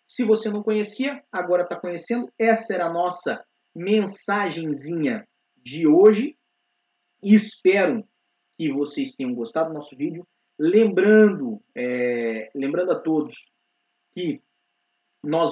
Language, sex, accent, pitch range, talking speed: Portuguese, male, Brazilian, 150-210 Hz, 110 wpm